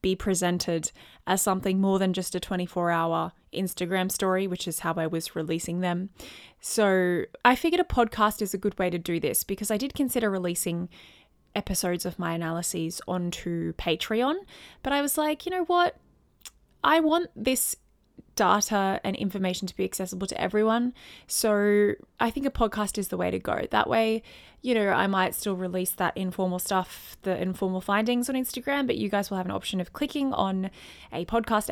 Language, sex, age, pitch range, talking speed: English, female, 20-39, 180-225 Hz, 185 wpm